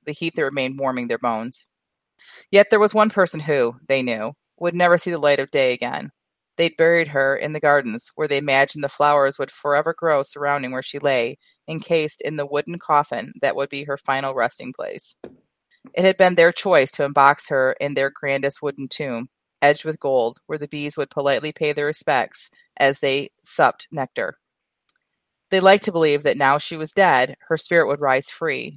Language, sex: English, female